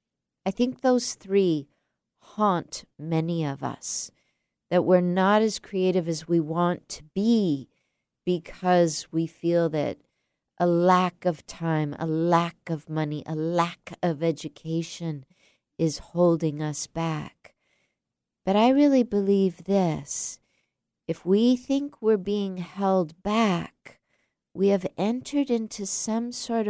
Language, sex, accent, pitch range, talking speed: English, female, American, 165-205 Hz, 125 wpm